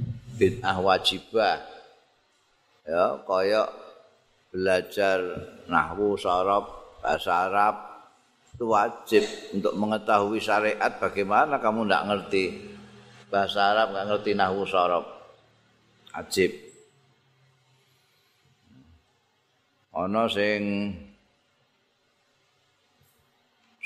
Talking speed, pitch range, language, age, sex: 70 wpm, 100-120 Hz, Indonesian, 50-69, male